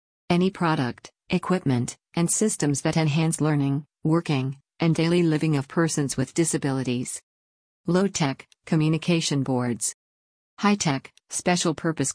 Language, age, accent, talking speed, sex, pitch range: English, 50-69, American, 105 wpm, female, 135-170 Hz